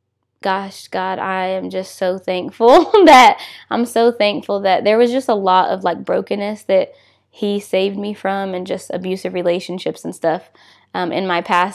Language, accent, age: English, American, 10-29